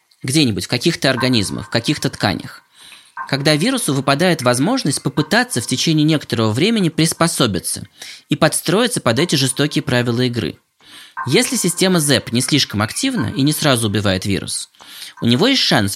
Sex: male